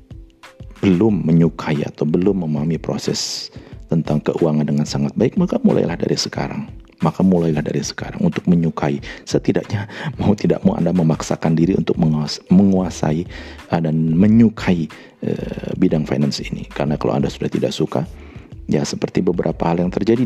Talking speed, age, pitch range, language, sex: 140 wpm, 40-59, 75-85 Hz, Indonesian, male